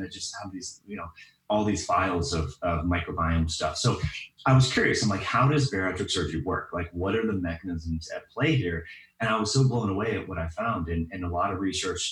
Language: English